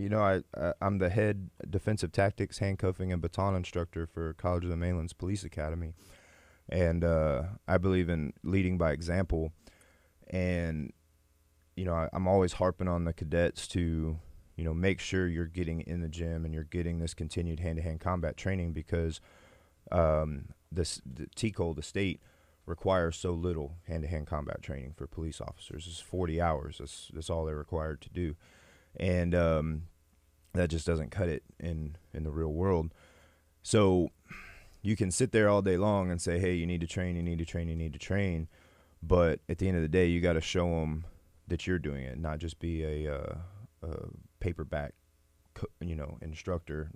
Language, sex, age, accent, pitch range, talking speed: English, male, 30-49, American, 80-90 Hz, 185 wpm